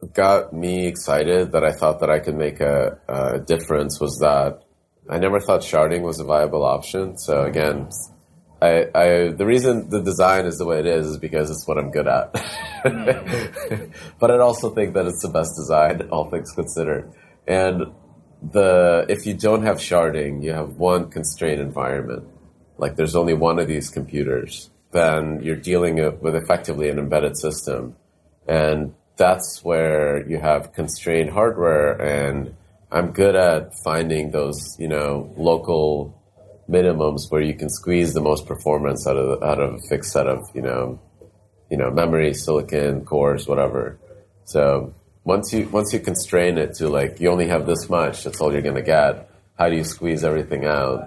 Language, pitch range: English, 75-90 Hz